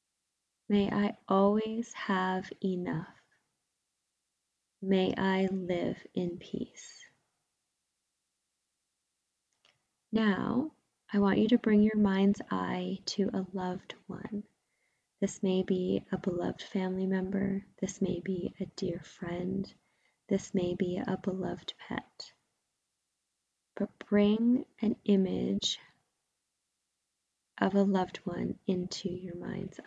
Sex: female